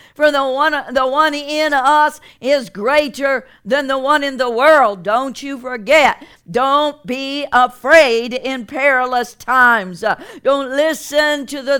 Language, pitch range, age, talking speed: English, 235-280 Hz, 50-69, 140 wpm